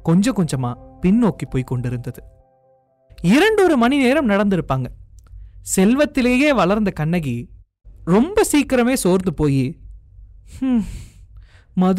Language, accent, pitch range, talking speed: Tamil, native, 125-210 Hz, 85 wpm